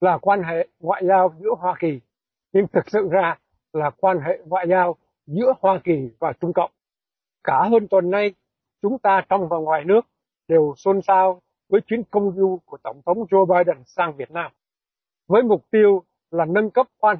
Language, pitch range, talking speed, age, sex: Vietnamese, 170-205 Hz, 190 wpm, 60-79, male